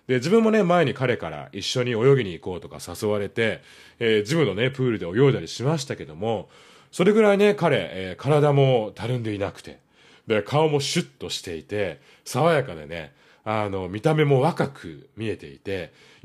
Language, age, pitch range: Japanese, 30-49, 105-155 Hz